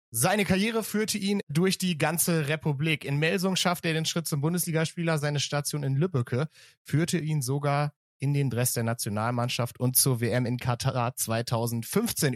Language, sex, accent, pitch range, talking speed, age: German, male, German, 130-170 Hz, 165 wpm, 30-49